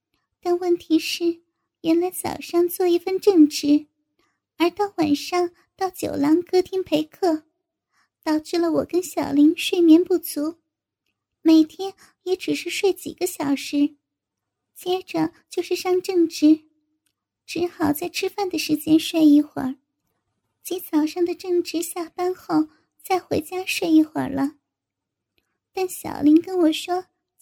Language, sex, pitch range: Chinese, male, 310-365 Hz